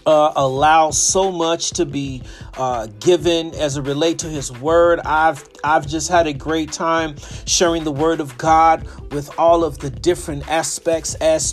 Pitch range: 145-180 Hz